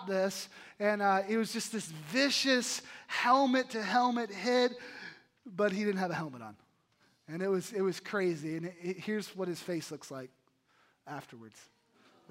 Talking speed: 165 wpm